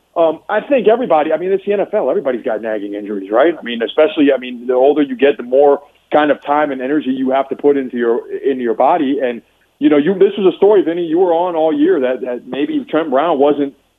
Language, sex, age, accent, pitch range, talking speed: English, male, 40-59, American, 130-155 Hz, 255 wpm